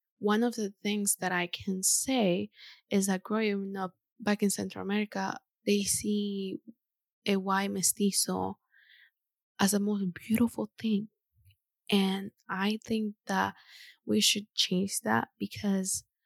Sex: female